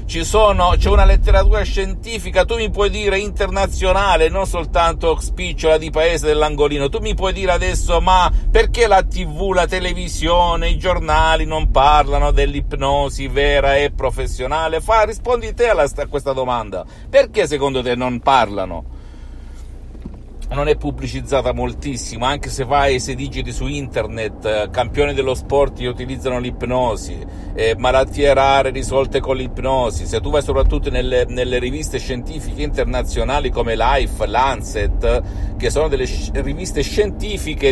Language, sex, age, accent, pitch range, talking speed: Italian, male, 50-69, native, 125-180 Hz, 135 wpm